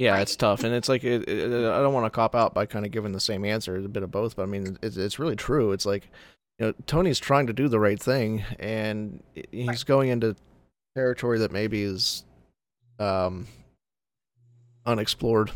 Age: 30-49